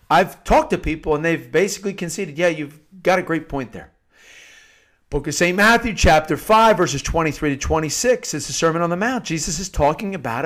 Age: 50-69